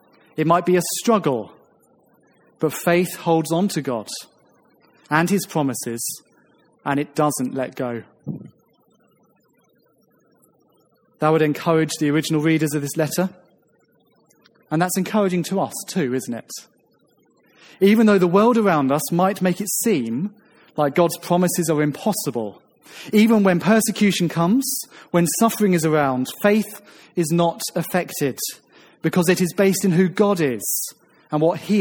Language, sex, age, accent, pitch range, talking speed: English, male, 30-49, British, 150-190 Hz, 140 wpm